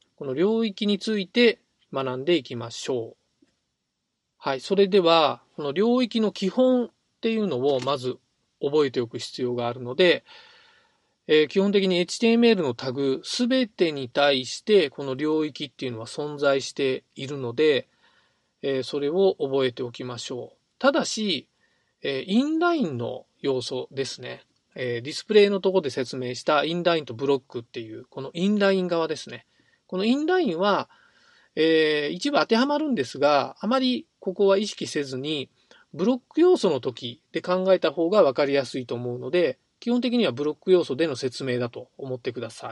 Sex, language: male, Japanese